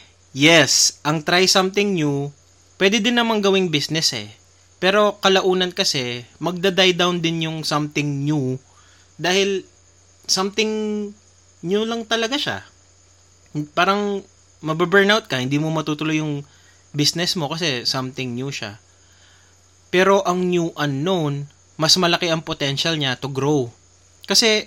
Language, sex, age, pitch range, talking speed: Filipino, male, 20-39, 110-180 Hz, 125 wpm